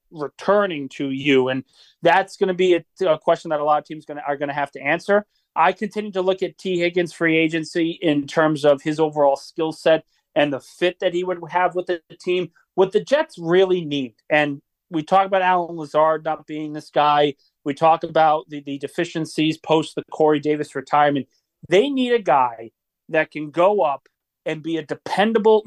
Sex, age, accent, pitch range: male, 40-59, American, 150-190 Hz